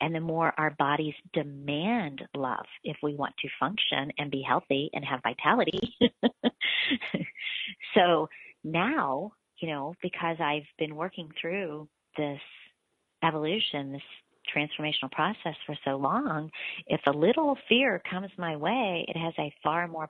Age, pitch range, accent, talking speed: 40-59, 145-185 Hz, American, 140 wpm